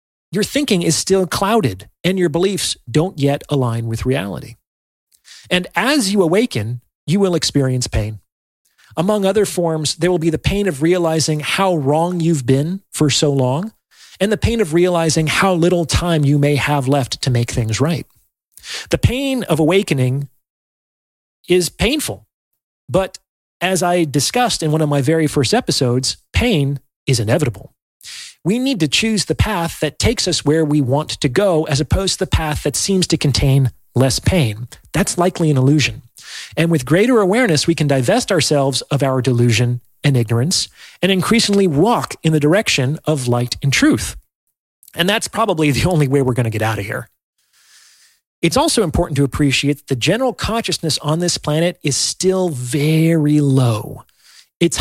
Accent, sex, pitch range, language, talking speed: American, male, 135-180 Hz, English, 170 wpm